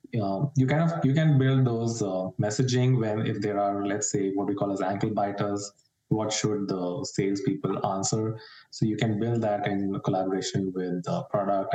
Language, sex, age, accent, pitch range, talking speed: English, male, 20-39, Indian, 95-125 Hz, 190 wpm